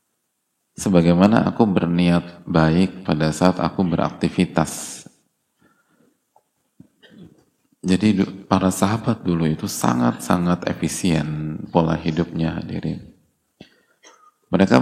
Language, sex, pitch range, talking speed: Indonesian, male, 85-95 Hz, 75 wpm